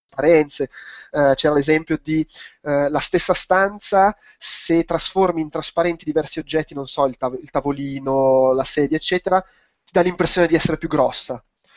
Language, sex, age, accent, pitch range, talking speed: Italian, male, 20-39, native, 145-175 Hz, 140 wpm